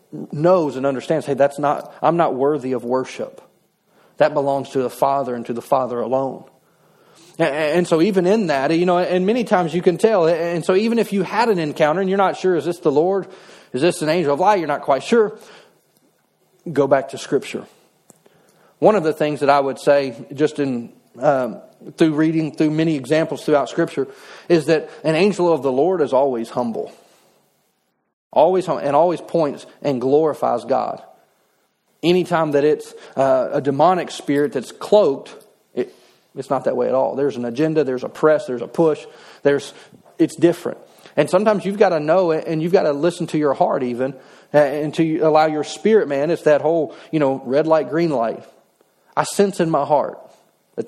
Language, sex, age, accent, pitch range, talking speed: English, male, 40-59, American, 140-180 Hz, 205 wpm